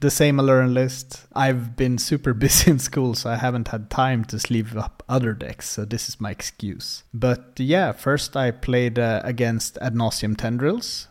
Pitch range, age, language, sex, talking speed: 110-140 Hz, 30-49, English, male, 185 wpm